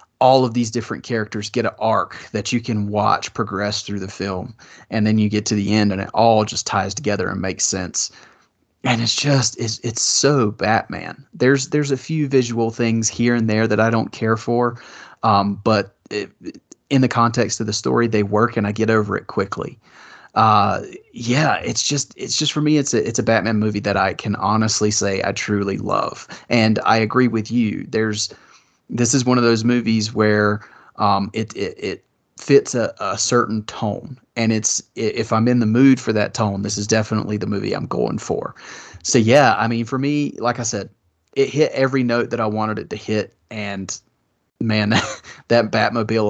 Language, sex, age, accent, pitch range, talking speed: English, male, 30-49, American, 105-120 Hz, 200 wpm